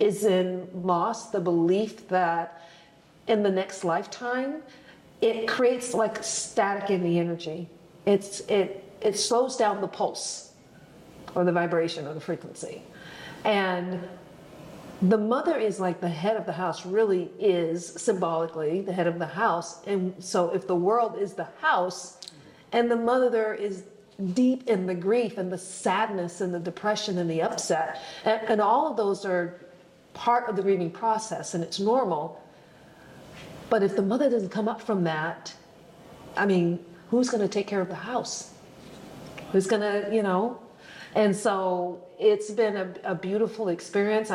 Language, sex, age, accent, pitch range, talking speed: English, female, 50-69, American, 170-210 Hz, 160 wpm